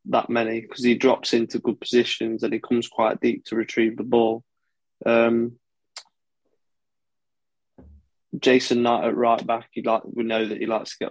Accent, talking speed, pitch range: British, 165 wpm, 105-115 Hz